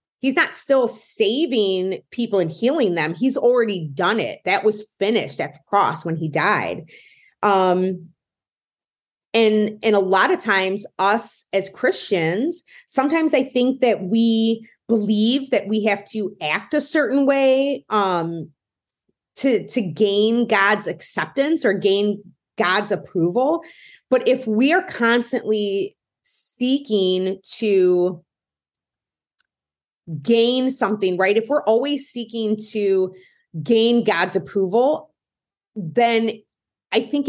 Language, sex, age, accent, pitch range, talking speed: English, female, 30-49, American, 180-235 Hz, 120 wpm